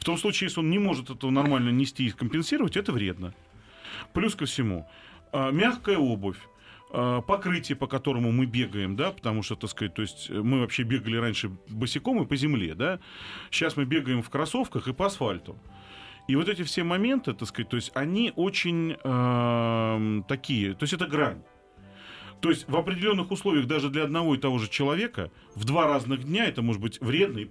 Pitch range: 105-160 Hz